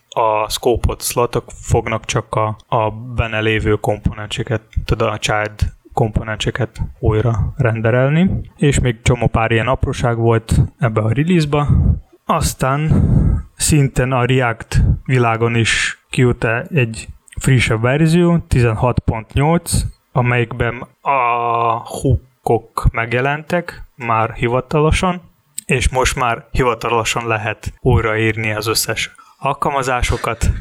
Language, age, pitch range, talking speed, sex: Hungarian, 20-39, 110-130 Hz, 100 wpm, male